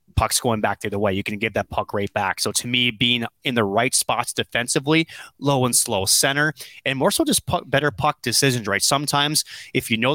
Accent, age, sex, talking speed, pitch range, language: American, 20-39, male, 225 wpm, 110-130 Hz, English